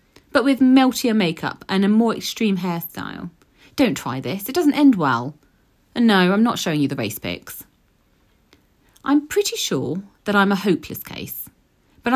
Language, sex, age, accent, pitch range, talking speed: English, female, 40-59, British, 170-270 Hz, 170 wpm